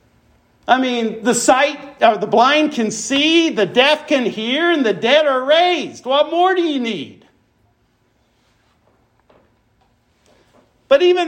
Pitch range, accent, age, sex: 175-245 Hz, American, 50-69, male